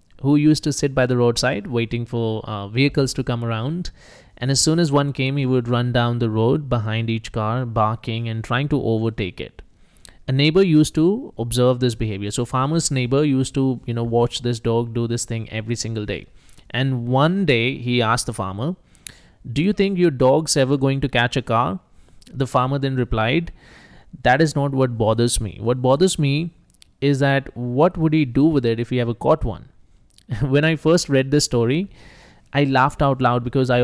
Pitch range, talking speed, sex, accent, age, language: 115-140 Hz, 200 wpm, male, Indian, 20-39, English